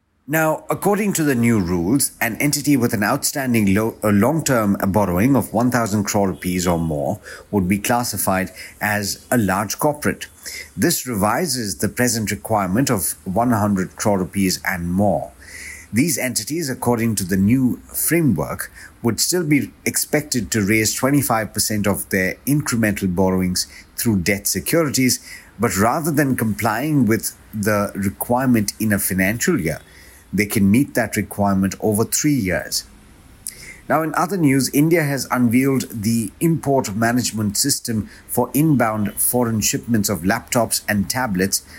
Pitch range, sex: 100-125 Hz, male